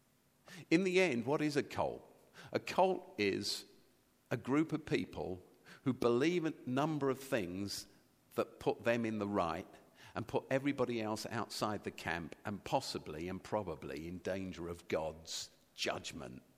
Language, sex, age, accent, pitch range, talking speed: English, male, 50-69, British, 90-130 Hz, 155 wpm